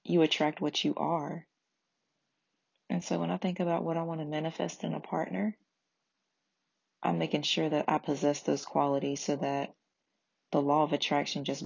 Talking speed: 175 wpm